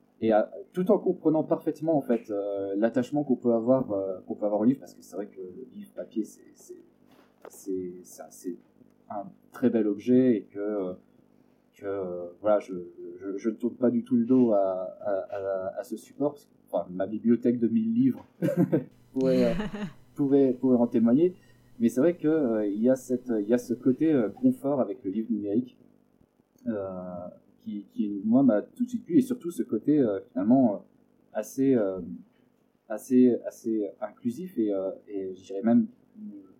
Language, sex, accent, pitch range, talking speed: French, male, French, 105-140 Hz, 185 wpm